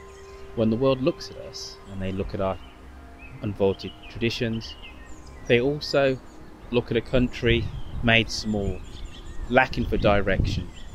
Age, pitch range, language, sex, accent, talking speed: 20-39, 90-115 Hz, English, male, British, 130 wpm